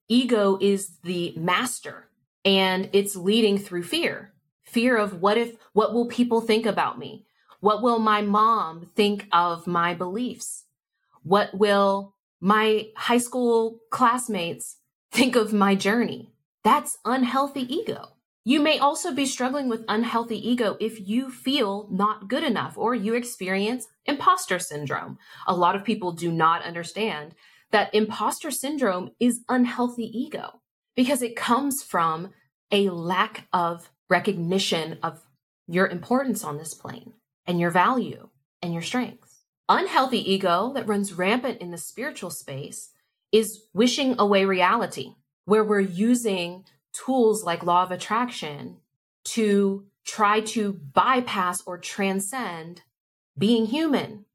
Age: 20-39